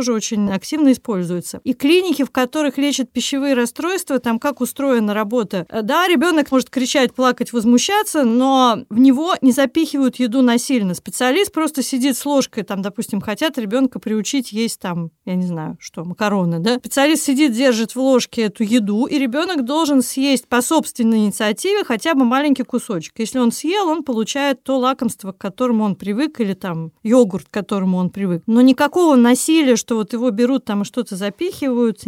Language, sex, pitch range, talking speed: Russian, female, 220-275 Hz, 175 wpm